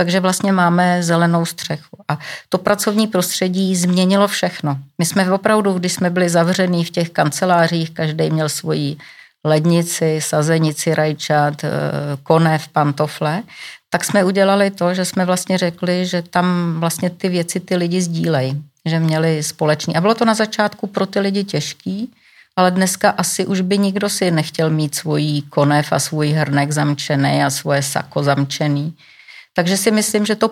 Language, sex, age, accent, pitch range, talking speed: Czech, female, 40-59, native, 155-195 Hz, 160 wpm